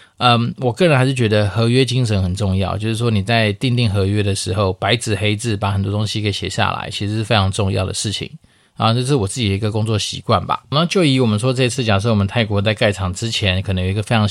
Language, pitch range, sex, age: Chinese, 100-120 Hz, male, 20-39